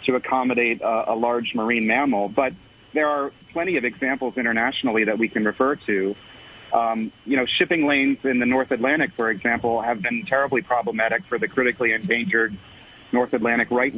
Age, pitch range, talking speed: 40-59, 115-130 Hz, 175 wpm